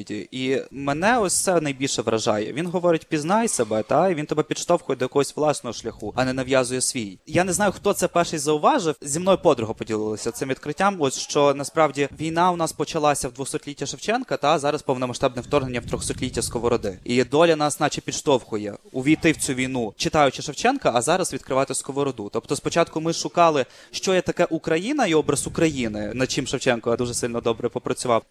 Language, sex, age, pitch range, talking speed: Ukrainian, male, 20-39, 125-160 Hz, 180 wpm